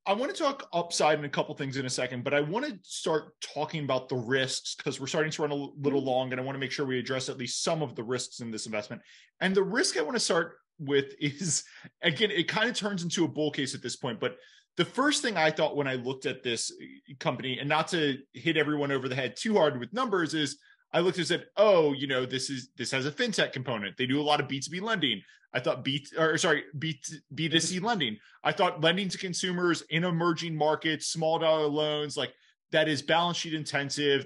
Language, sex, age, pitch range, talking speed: English, male, 20-39, 135-170 Hz, 245 wpm